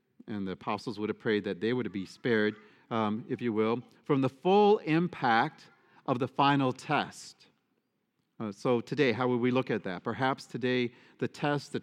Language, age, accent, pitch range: English, 40-59, American, 115-145 Hz